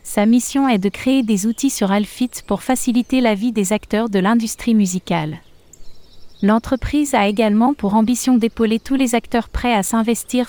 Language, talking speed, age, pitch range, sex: French, 170 wpm, 30-49, 210-245 Hz, female